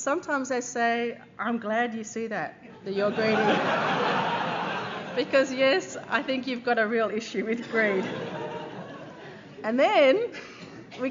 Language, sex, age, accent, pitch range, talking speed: English, female, 30-49, Australian, 185-230 Hz, 135 wpm